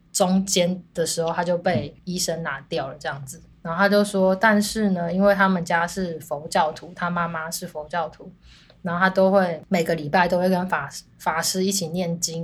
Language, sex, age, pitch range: Chinese, female, 20-39, 160-195 Hz